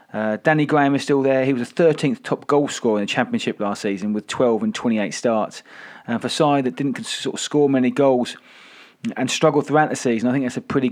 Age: 30-49